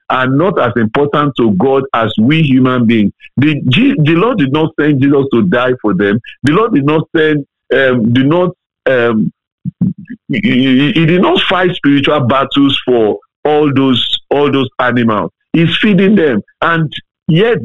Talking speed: 165 wpm